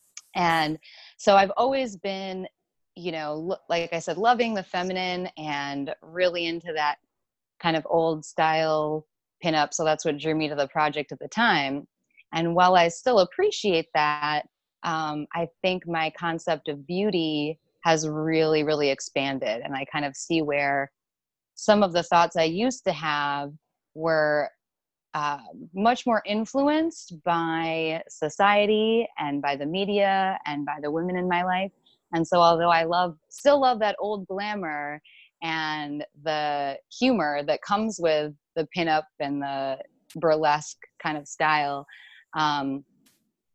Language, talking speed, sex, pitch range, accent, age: English, 145 wpm, female, 150-180 Hz, American, 20-39